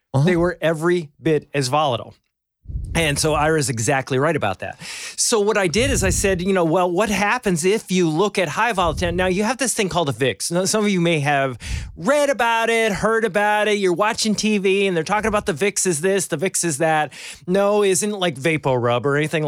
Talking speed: 230 wpm